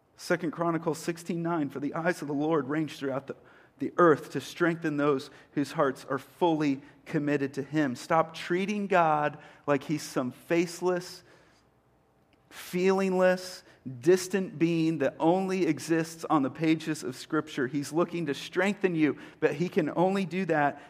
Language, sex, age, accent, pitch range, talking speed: English, male, 40-59, American, 145-175 Hz, 155 wpm